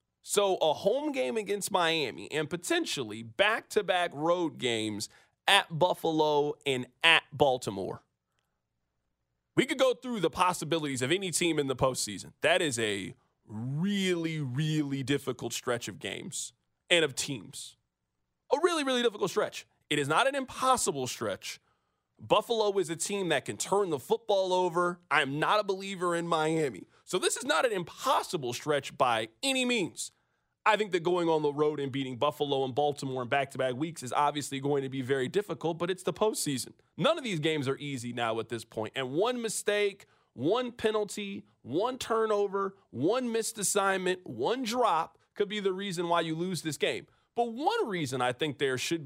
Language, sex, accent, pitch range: English, male, American, 135-195 Hz